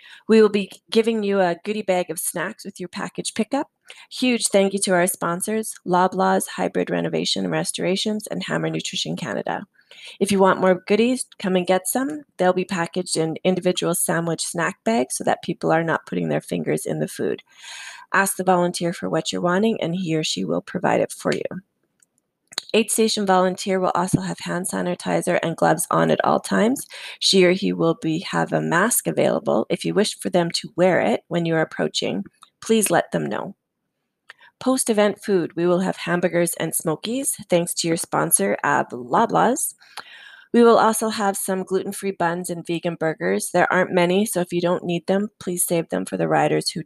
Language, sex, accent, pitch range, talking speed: English, female, American, 170-200 Hz, 195 wpm